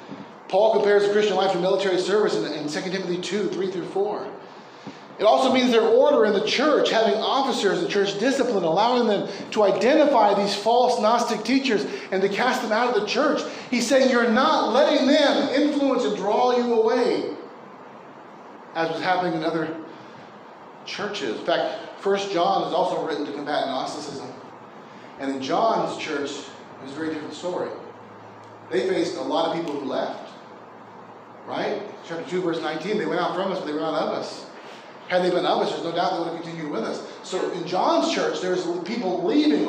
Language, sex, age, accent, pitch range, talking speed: English, male, 30-49, American, 190-275 Hz, 195 wpm